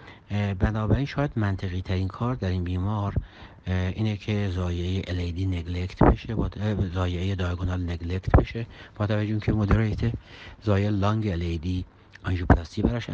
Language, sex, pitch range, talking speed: Persian, male, 85-105 Hz, 125 wpm